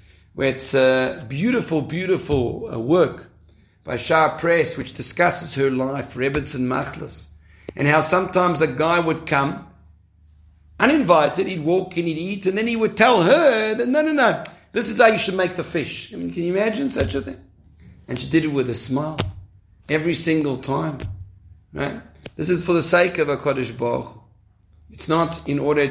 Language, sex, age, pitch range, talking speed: English, male, 50-69, 120-170 Hz, 185 wpm